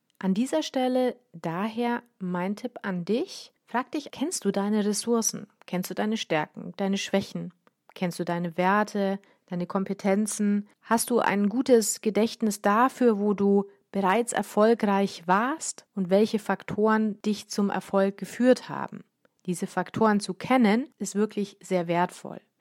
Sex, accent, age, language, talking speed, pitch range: female, German, 40-59, German, 140 wpm, 180-235 Hz